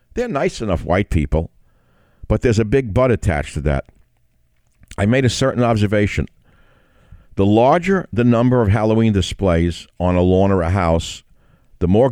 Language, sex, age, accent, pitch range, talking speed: English, male, 60-79, American, 85-115 Hz, 165 wpm